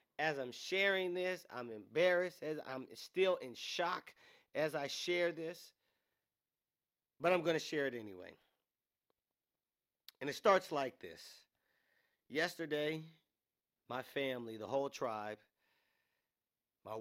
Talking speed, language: 120 wpm, English